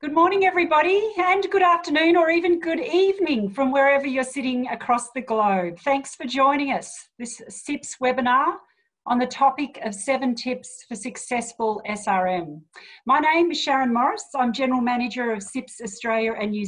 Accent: Australian